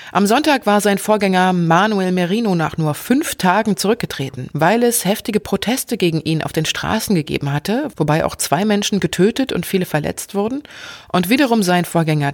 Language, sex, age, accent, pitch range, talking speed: German, female, 30-49, German, 170-210 Hz, 175 wpm